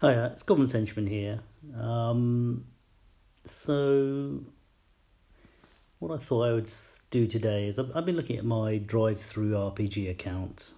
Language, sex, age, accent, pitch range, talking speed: English, male, 40-59, British, 100-115 Hz, 140 wpm